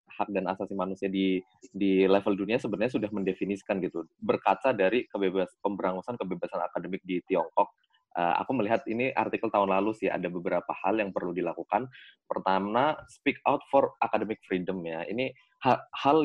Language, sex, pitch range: Indonesian, male, 100-120 Hz